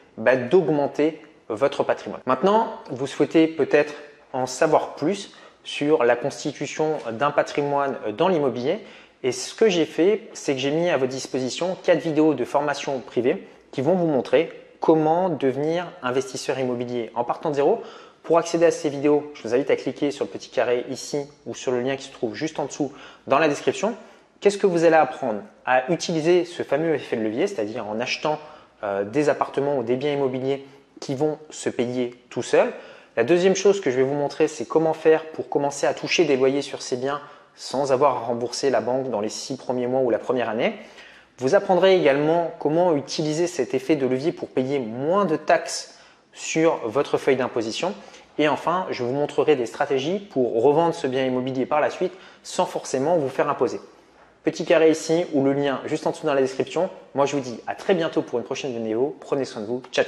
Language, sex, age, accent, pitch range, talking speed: French, male, 20-39, French, 130-165 Hz, 205 wpm